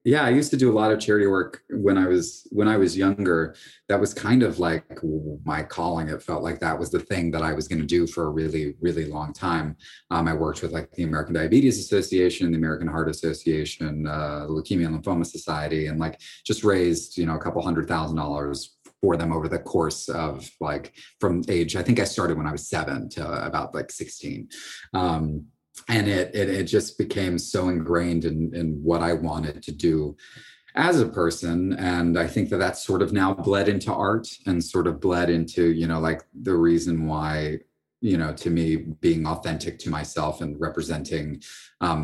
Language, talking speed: English, 205 wpm